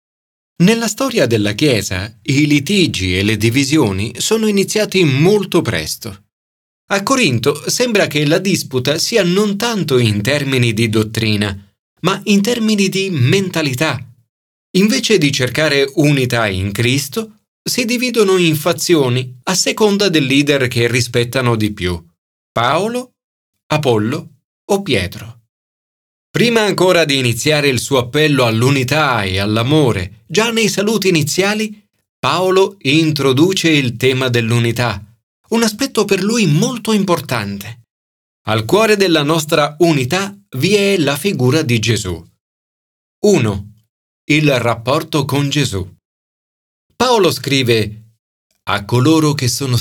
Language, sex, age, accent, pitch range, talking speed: Italian, male, 30-49, native, 115-185 Hz, 120 wpm